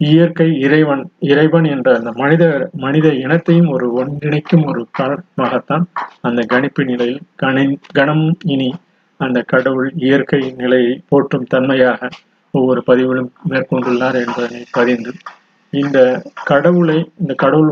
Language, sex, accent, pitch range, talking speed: Tamil, male, native, 130-170 Hz, 110 wpm